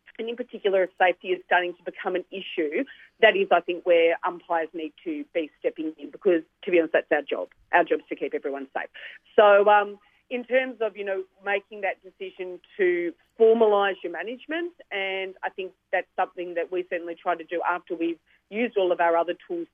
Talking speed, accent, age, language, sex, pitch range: 210 wpm, Australian, 40-59, English, female, 170-215 Hz